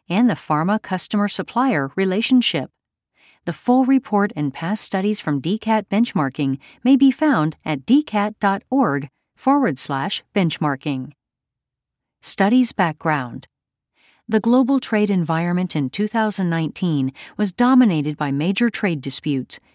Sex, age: female, 40-59